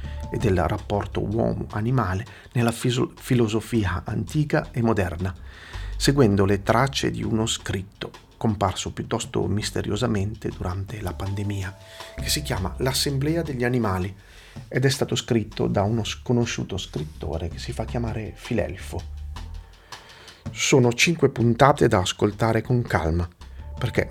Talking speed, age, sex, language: 120 wpm, 40-59, male, Italian